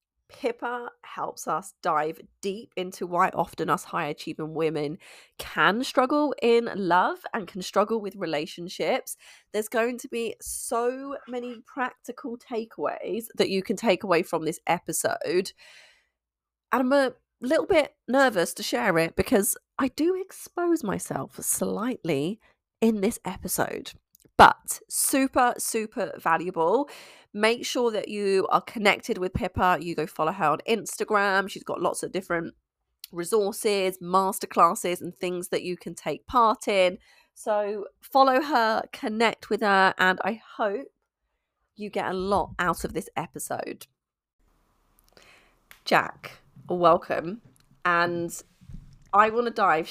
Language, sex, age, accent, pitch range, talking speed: English, female, 30-49, British, 170-235 Hz, 135 wpm